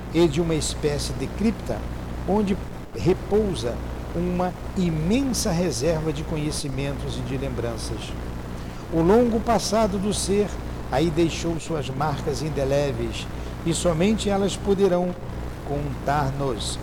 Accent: Brazilian